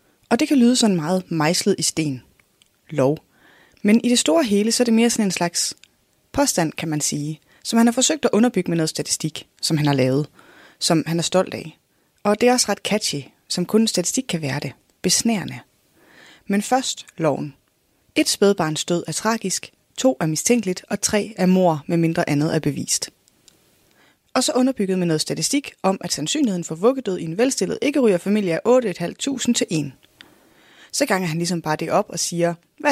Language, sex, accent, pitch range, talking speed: Danish, female, native, 160-230 Hz, 195 wpm